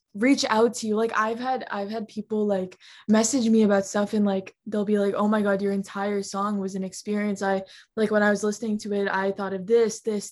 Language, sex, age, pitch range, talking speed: English, female, 10-29, 195-220 Hz, 245 wpm